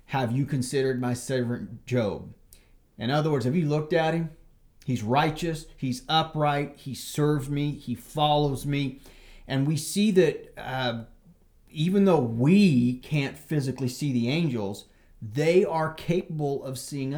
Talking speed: 145 wpm